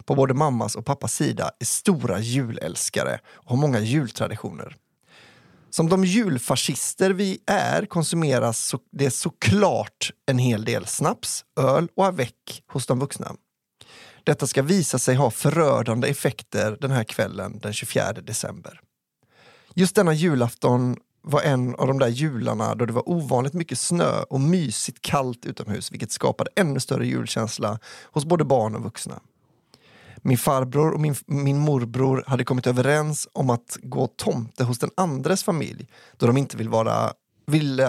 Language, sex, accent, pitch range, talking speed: English, male, Swedish, 120-155 Hz, 155 wpm